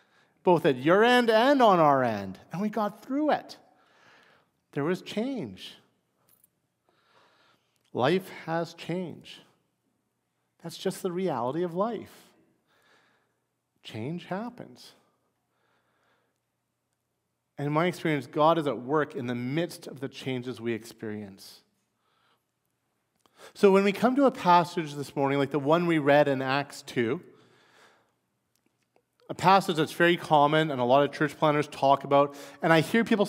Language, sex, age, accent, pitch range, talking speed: English, male, 40-59, American, 140-205 Hz, 140 wpm